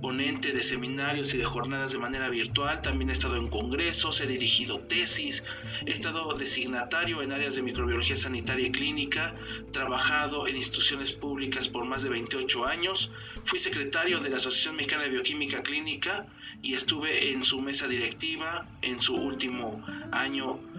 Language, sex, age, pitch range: English, male, 40-59, 120-145 Hz